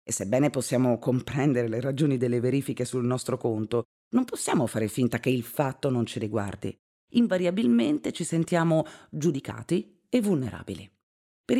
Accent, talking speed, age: native, 145 wpm, 30-49